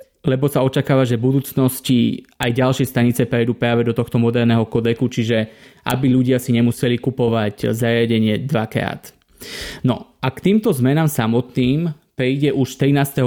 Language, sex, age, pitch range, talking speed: Slovak, male, 20-39, 120-140 Hz, 145 wpm